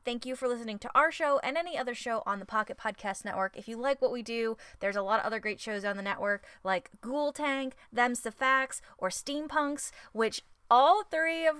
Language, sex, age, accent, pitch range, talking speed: English, female, 20-39, American, 200-265 Hz, 230 wpm